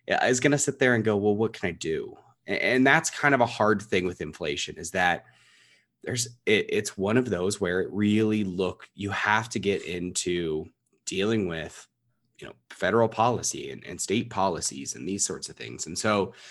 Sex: male